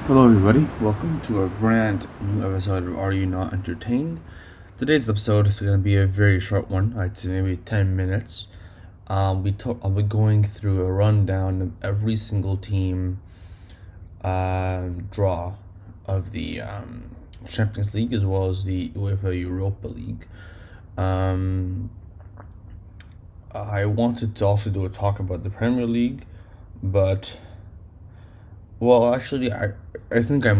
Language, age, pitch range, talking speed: English, 20-39, 95-105 Hz, 140 wpm